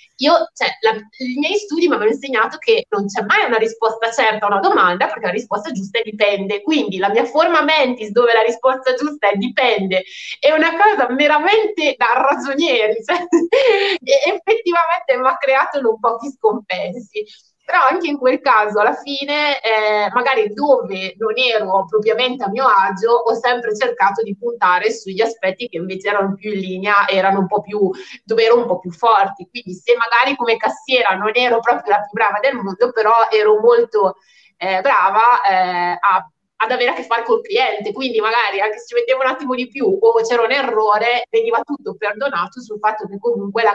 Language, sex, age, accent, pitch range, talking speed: Italian, female, 20-39, native, 210-315 Hz, 195 wpm